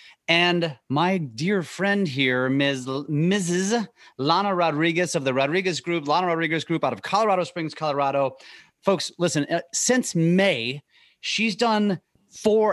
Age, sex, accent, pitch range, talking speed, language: 30-49, male, American, 135-180 Hz, 140 wpm, English